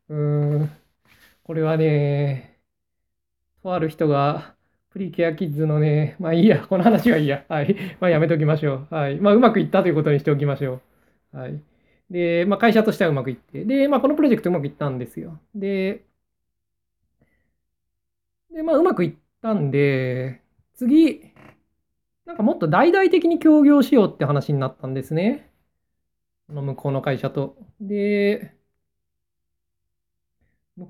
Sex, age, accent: male, 20-39, native